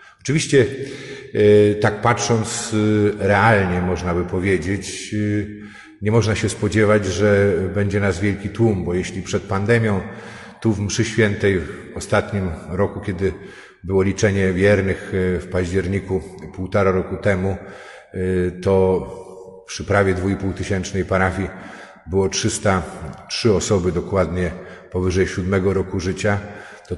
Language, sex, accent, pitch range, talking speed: Polish, male, native, 95-110 Hz, 115 wpm